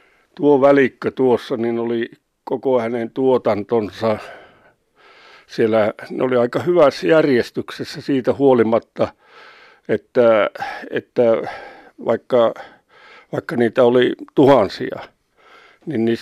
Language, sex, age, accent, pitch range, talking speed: Finnish, male, 60-79, native, 115-145 Hz, 90 wpm